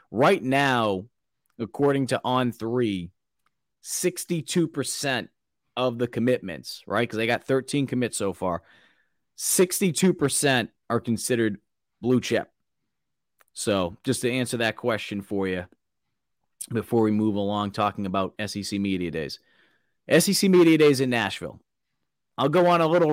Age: 30-49